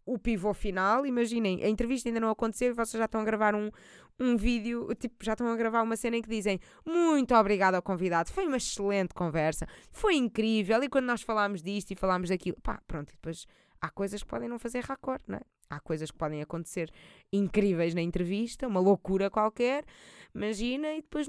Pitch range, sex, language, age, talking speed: 195-255 Hz, female, Portuguese, 20-39, 205 wpm